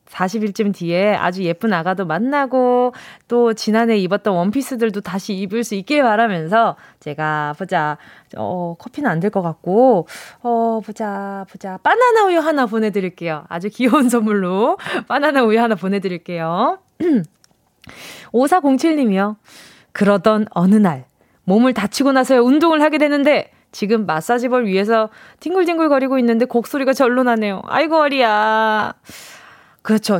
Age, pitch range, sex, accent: 20-39, 195-260 Hz, female, native